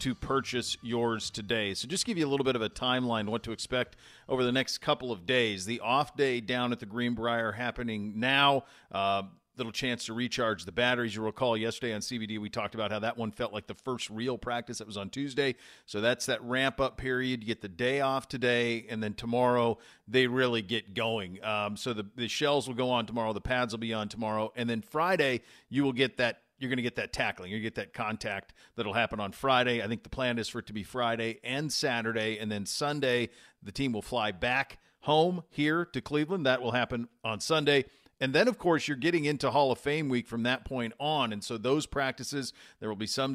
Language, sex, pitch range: English, male, 110-130 Hz